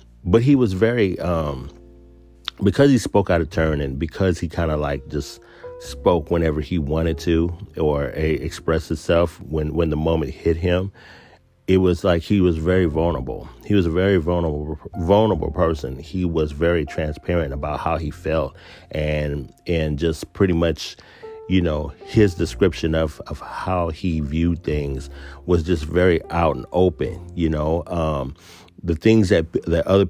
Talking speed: 165 wpm